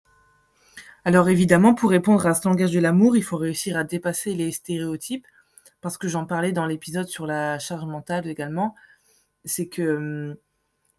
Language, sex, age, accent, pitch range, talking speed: French, female, 20-39, French, 155-185 Hz, 165 wpm